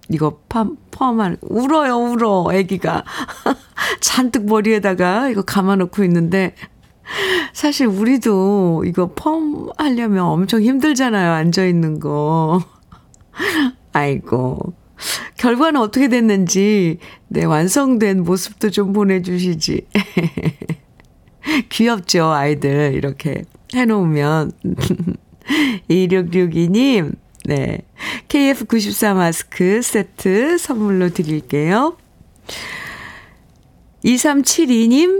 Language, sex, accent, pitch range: Korean, female, native, 175-245 Hz